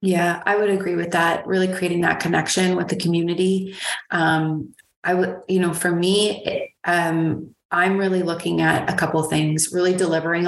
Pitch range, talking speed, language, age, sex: 160-185 Hz, 180 wpm, English, 30-49, female